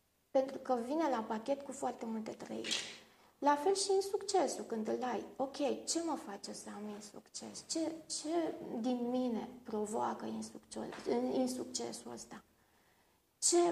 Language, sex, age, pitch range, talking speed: Romanian, female, 30-49, 235-315 Hz, 155 wpm